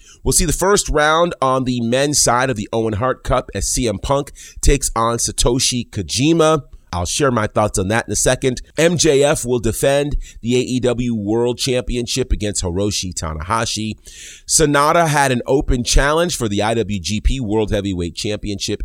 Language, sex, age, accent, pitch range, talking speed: English, male, 30-49, American, 100-130 Hz, 160 wpm